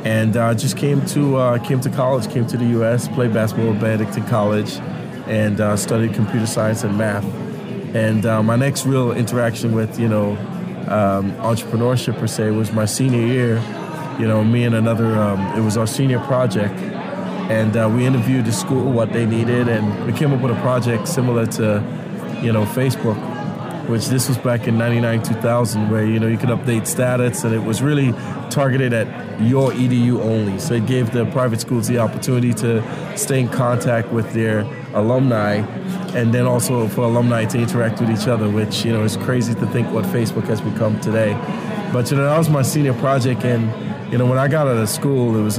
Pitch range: 110-125 Hz